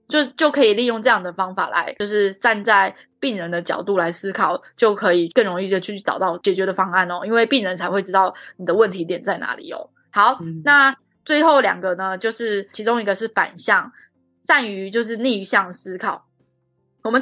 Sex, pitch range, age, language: female, 190-245 Hz, 20-39, Chinese